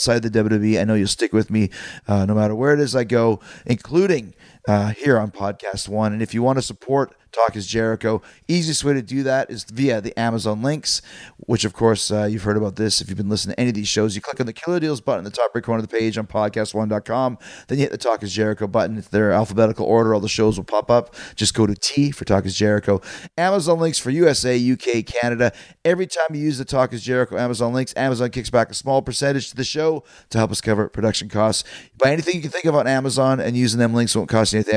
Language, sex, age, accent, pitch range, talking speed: English, male, 30-49, American, 110-135 Hz, 255 wpm